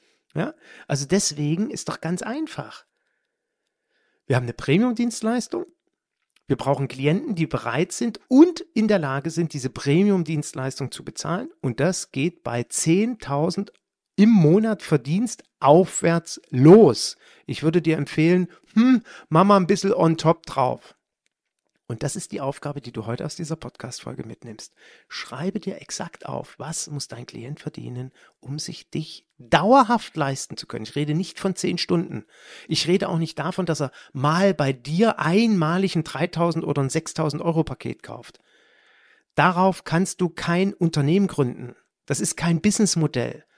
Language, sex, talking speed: German, male, 155 wpm